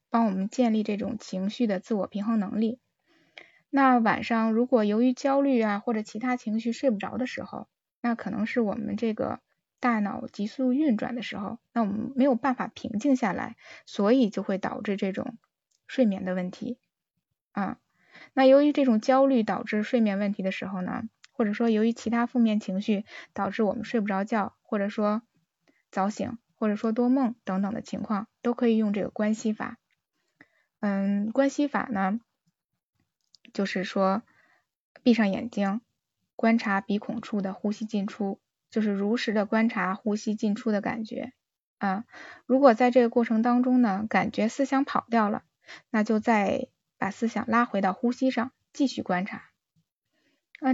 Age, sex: 10-29, female